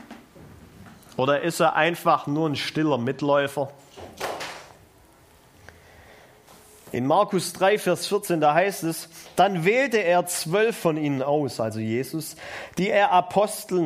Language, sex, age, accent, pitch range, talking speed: German, male, 40-59, German, 140-200 Hz, 120 wpm